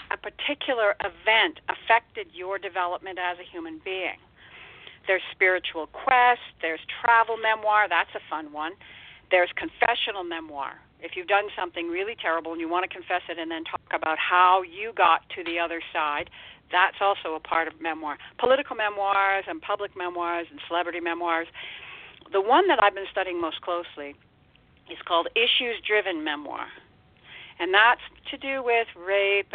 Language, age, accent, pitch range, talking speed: English, 50-69, American, 170-230 Hz, 160 wpm